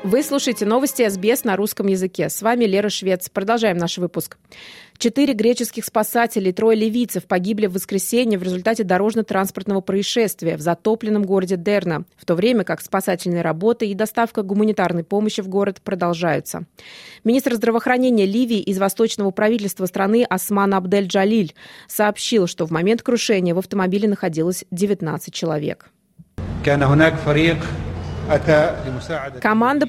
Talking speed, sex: 125 wpm, female